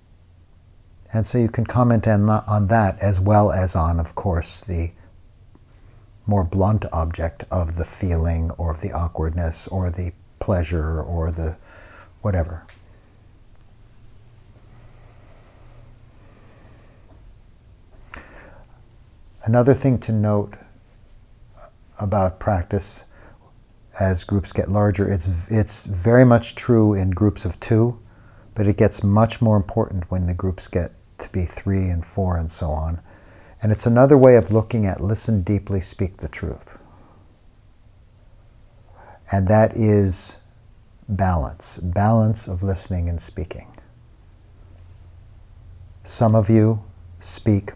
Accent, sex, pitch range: American, male, 90-110 Hz